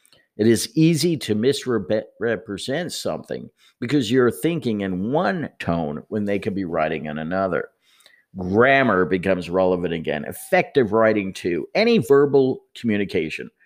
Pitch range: 100-135 Hz